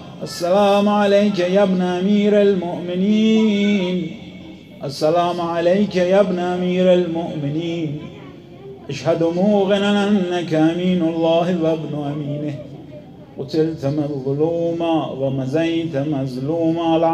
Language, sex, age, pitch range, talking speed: Persian, male, 30-49, 150-180 Hz, 90 wpm